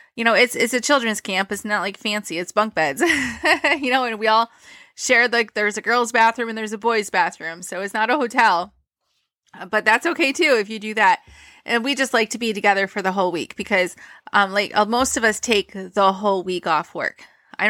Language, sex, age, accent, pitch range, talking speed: English, female, 20-39, American, 190-235 Hz, 235 wpm